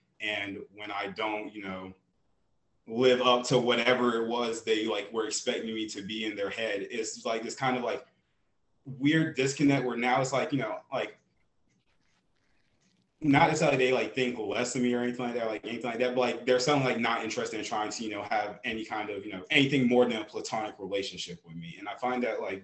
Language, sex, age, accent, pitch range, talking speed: English, male, 20-39, American, 105-130 Hz, 225 wpm